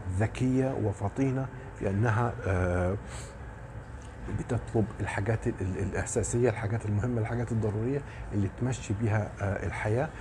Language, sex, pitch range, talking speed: Arabic, male, 105-125 Hz, 80 wpm